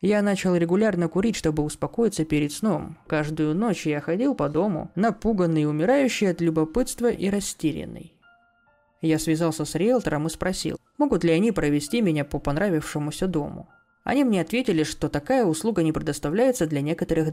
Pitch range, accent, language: 150-210 Hz, native, Russian